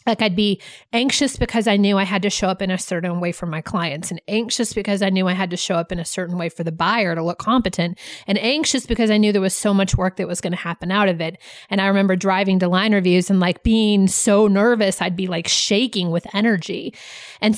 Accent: American